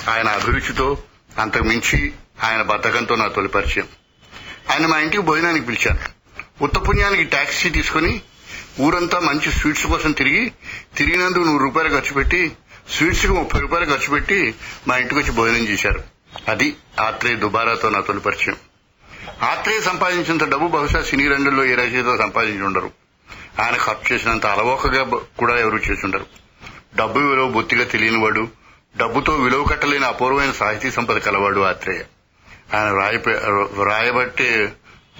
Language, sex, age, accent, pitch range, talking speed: Telugu, male, 60-79, native, 110-140 Hz, 115 wpm